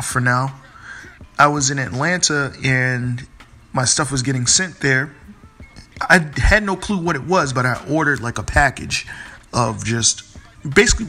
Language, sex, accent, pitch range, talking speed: English, male, American, 120-150 Hz, 155 wpm